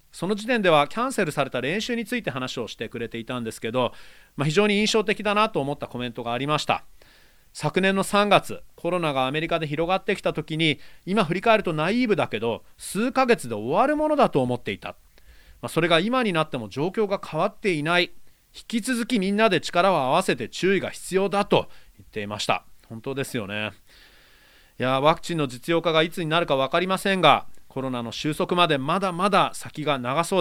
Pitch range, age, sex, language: 140-205 Hz, 30-49, male, Japanese